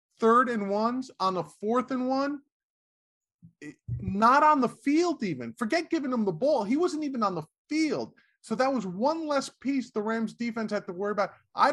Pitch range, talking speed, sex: 190-255 Hz, 195 wpm, male